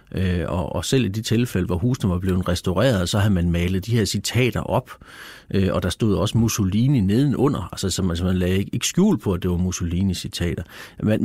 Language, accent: Danish, native